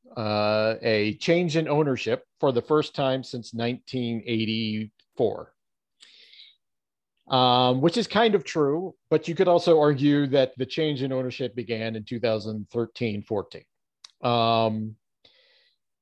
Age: 40-59